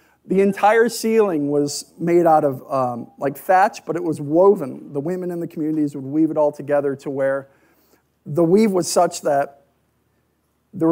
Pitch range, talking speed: 140-190 Hz, 175 wpm